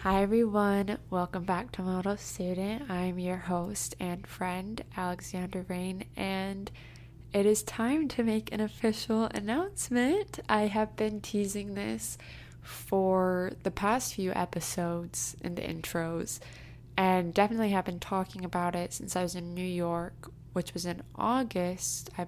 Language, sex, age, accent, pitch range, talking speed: English, female, 20-39, American, 175-205 Hz, 145 wpm